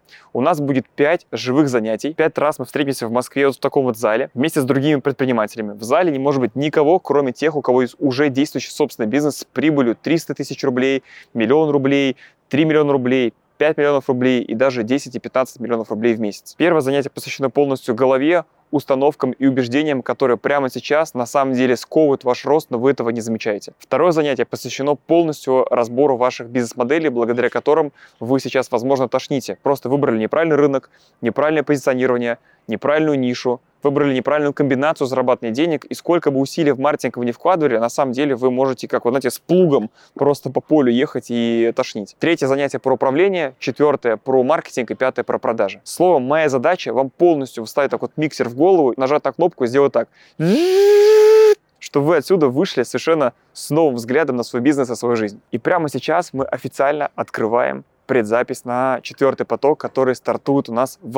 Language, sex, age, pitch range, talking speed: Russian, male, 20-39, 125-145 Hz, 180 wpm